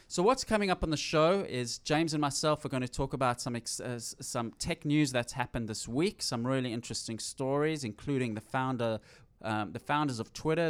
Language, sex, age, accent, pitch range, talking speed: English, male, 20-39, Australian, 110-145 Hz, 215 wpm